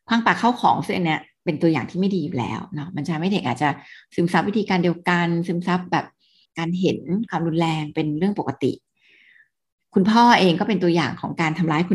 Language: Thai